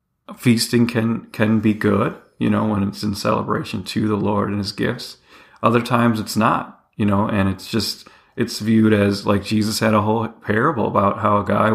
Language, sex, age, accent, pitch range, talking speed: English, male, 40-59, American, 100-120 Hz, 200 wpm